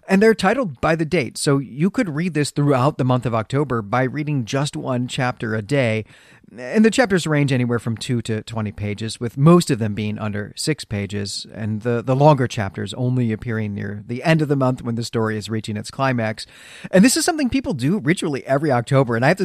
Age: 40-59